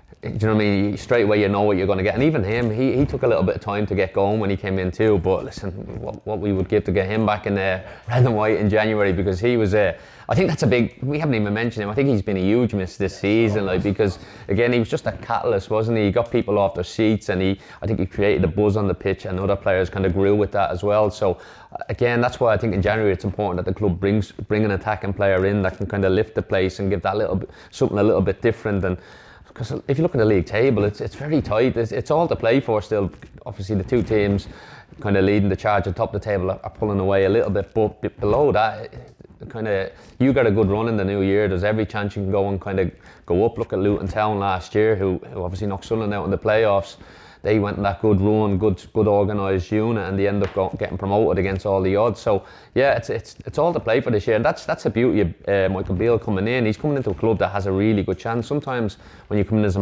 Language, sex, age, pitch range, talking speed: English, male, 20-39, 95-110 Hz, 290 wpm